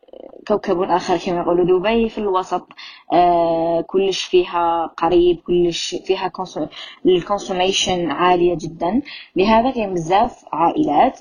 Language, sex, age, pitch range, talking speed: Arabic, female, 20-39, 175-225 Hz, 100 wpm